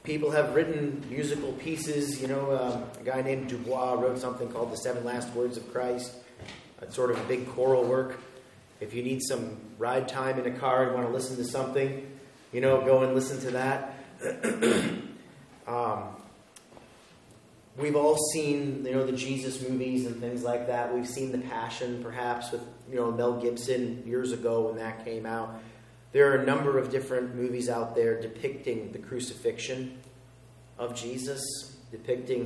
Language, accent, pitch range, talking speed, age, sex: English, American, 115-130 Hz, 175 wpm, 30-49, male